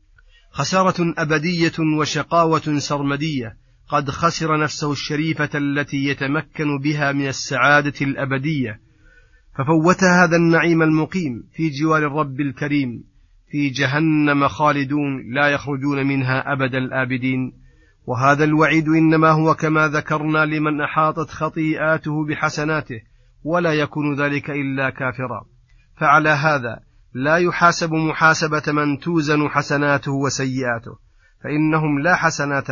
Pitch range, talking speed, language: 135-155 Hz, 105 wpm, Arabic